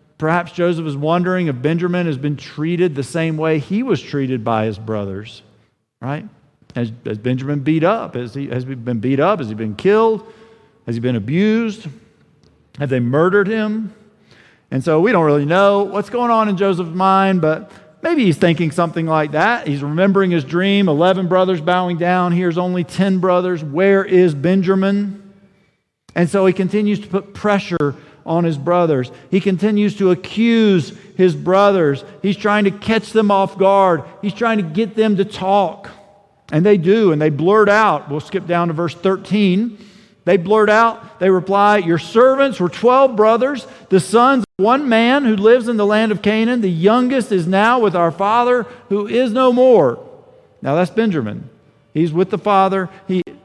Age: 50-69